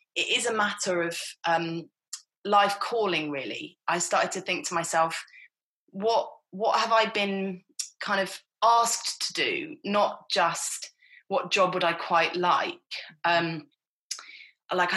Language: English